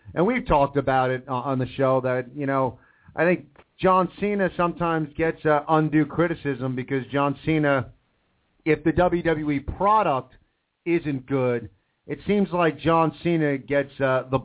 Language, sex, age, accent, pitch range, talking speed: English, male, 40-59, American, 130-160 Hz, 155 wpm